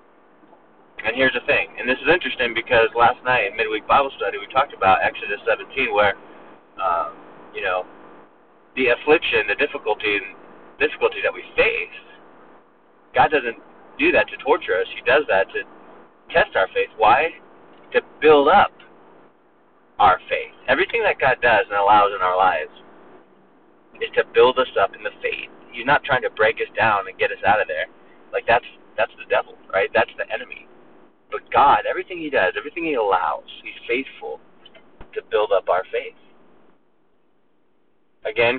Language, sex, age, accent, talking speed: English, male, 30-49, American, 170 wpm